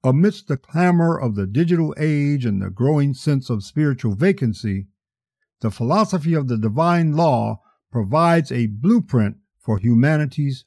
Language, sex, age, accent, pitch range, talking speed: English, male, 50-69, American, 110-165 Hz, 140 wpm